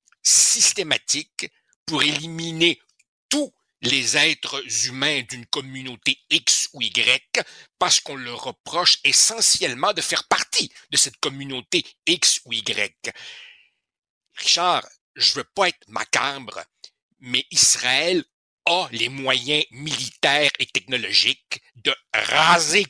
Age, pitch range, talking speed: 60-79, 130-160 Hz, 110 wpm